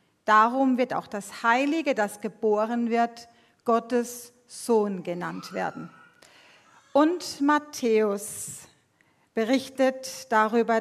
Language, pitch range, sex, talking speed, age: German, 220-275 Hz, female, 90 wpm, 40-59